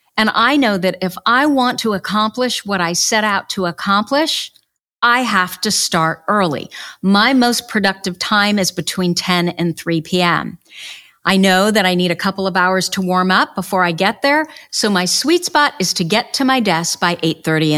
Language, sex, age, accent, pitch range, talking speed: English, female, 50-69, American, 170-235 Hz, 195 wpm